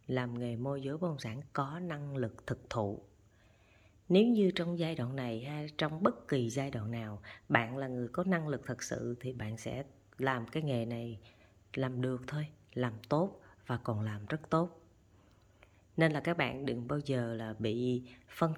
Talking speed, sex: 190 wpm, female